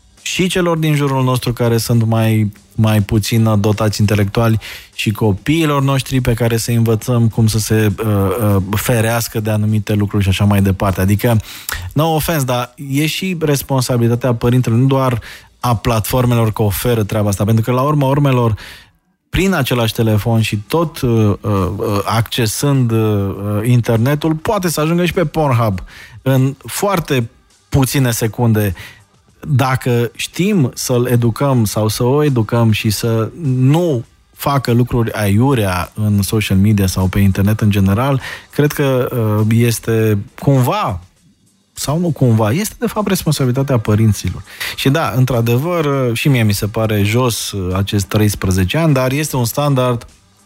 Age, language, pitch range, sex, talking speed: 20-39, Romanian, 105-130 Hz, male, 150 wpm